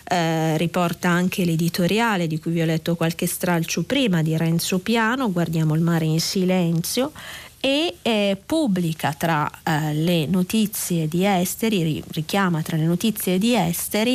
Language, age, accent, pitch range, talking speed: Italian, 40-59, native, 165-210 Hz, 150 wpm